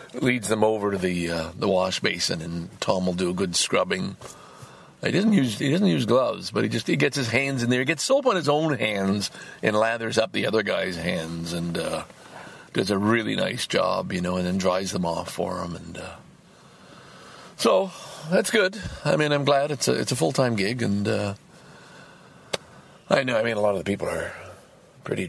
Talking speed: 215 wpm